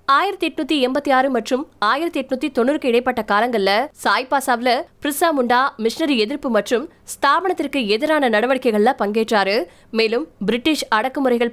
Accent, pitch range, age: native, 225-275 Hz, 20-39